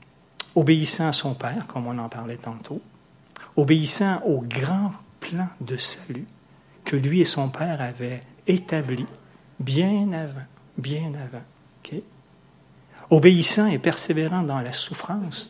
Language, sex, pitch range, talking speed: French, male, 130-175 Hz, 130 wpm